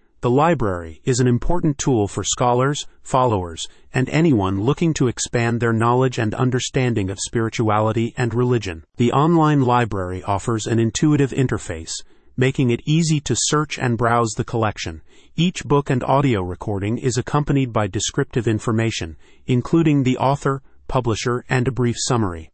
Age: 30-49